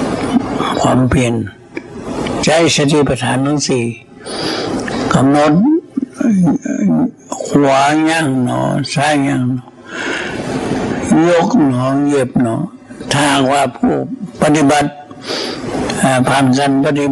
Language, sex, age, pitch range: Thai, male, 60-79, 130-155 Hz